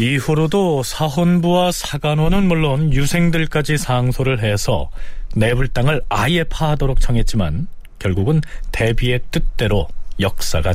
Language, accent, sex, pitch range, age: Korean, native, male, 100-160 Hz, 40-59